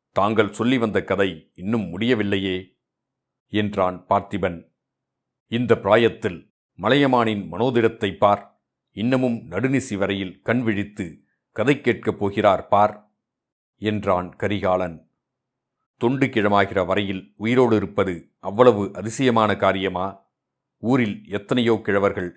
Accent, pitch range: native, 95-120 Hz